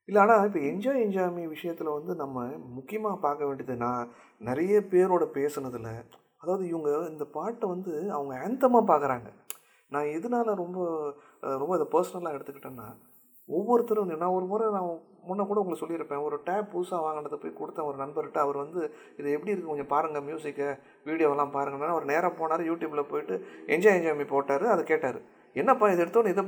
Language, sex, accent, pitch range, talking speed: Tamil, male, native, 140-195 Hz, 155 wpm